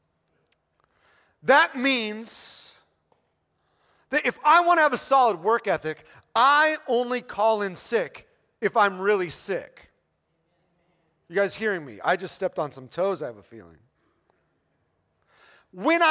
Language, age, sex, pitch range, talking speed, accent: English, 40-59, male, 190-265 Hz, 135 wpm, American